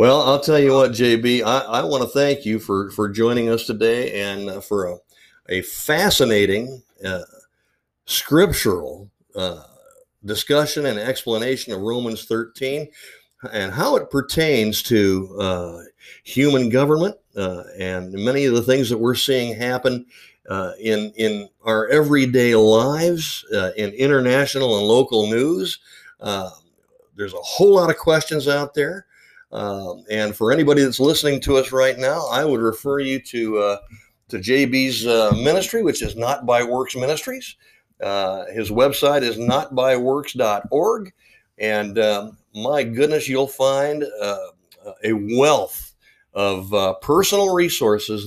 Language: English